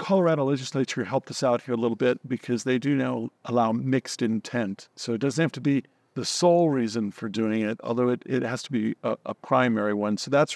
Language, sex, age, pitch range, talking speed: English, male, 50-69, 125-155 Hz, 225 wpm